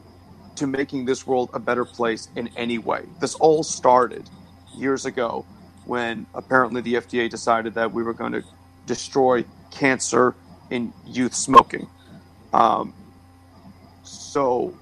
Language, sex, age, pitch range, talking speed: English, male, 30-49, 95-130 Hz, 130 wpm